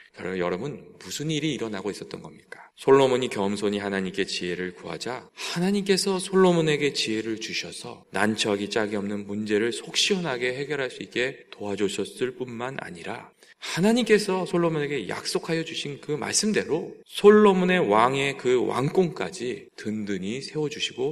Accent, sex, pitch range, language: native, male, 110-185 Hz, Korean